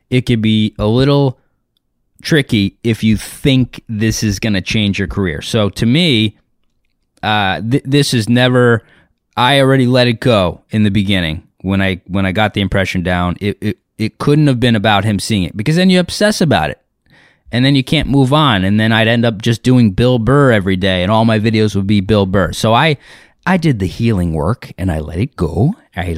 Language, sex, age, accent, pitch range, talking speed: English, male, 20-39, American, 95-140 Hz, 215 wpm